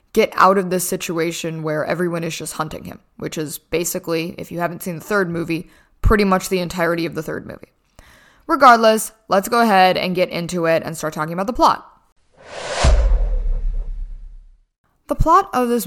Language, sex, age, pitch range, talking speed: English, female, 10-29, 165-210 Hz, 180 wpm